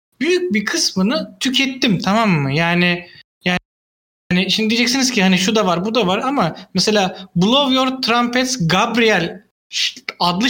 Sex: male